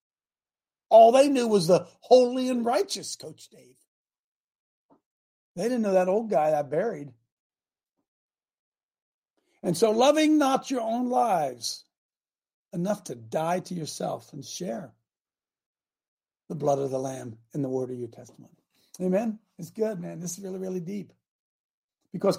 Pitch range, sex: 155-235 Hz, male